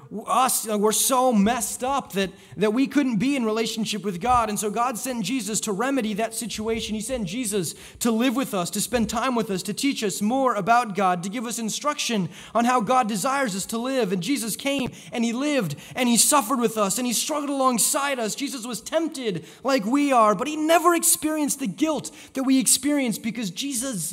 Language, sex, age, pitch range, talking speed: English, male, 30-49, 200-255 Hz, 215 wpm